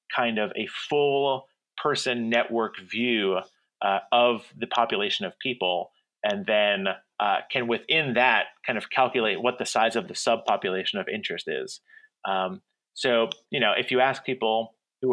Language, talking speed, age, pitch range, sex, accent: English, 160 wpm, 30-49, 105-130 Hz, male, American